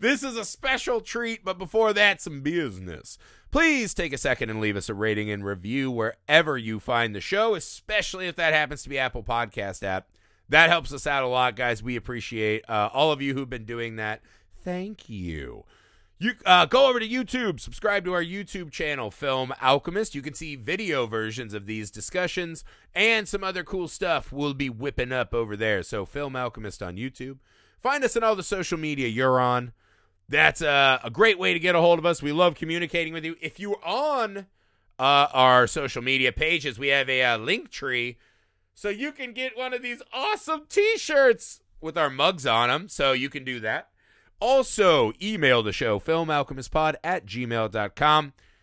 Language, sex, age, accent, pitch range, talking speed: English, male, 30-49, American, 115-190 Hz, 195 wpm